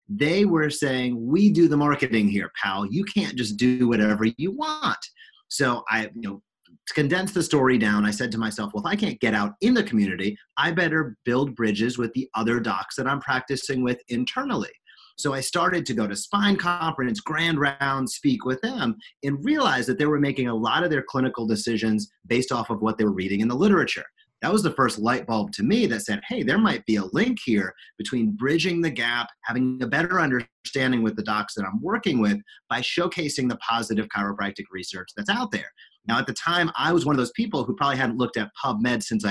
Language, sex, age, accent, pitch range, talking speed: English, male, 30-49, American, 110-165 Hz, 220 wpm